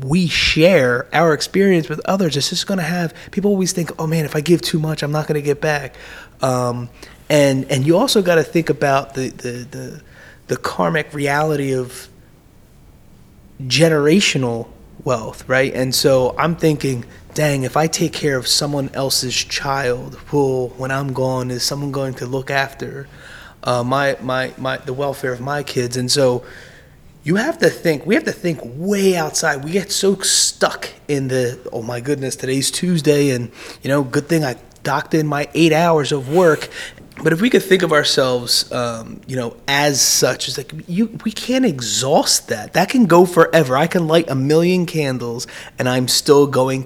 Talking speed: 185 wpm